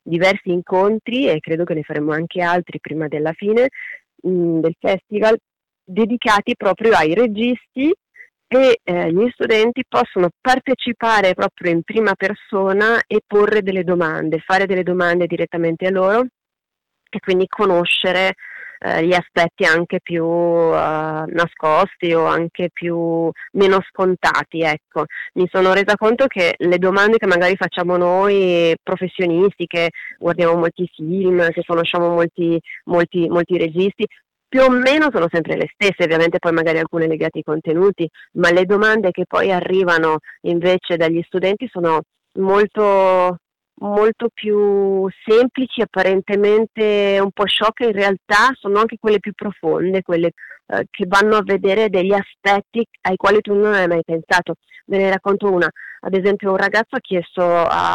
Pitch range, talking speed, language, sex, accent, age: 170-210 Hz, 145 wpm, Italian, female, native, 30-49